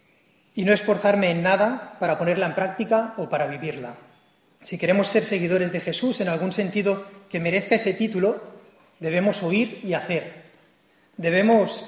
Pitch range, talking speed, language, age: 170-205 Hz, 150 wpm, English, 40-59